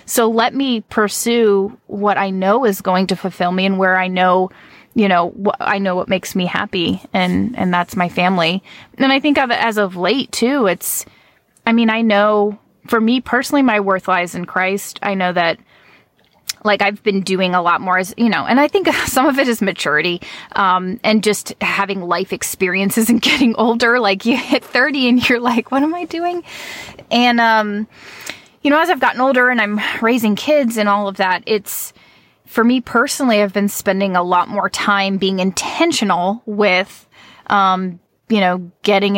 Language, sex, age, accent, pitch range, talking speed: English, female, 20-39, American, 185-235 Hz, 190 wpm